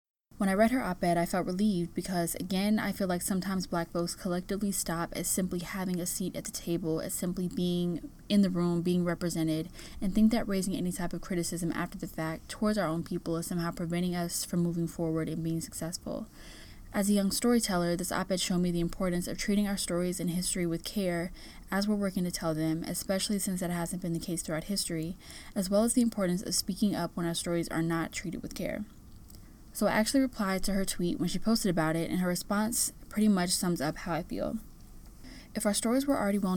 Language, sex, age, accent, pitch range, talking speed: English, female, 10-29, American, 170-200 Hz, 225 wpm